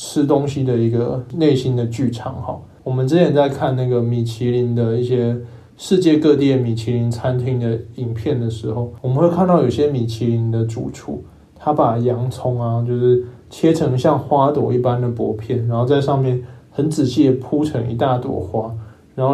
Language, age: Chinese, 20-39